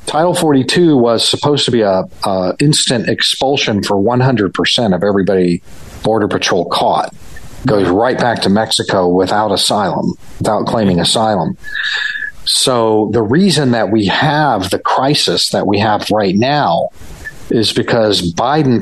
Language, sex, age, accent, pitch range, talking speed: English, male, 40-59, American, 105-145 Hz, 140 wpm